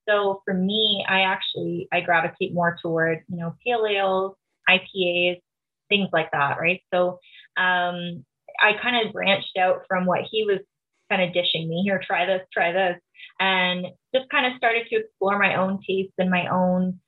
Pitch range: 180-220 Hz